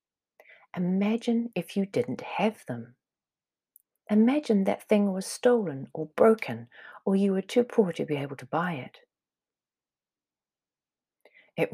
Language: English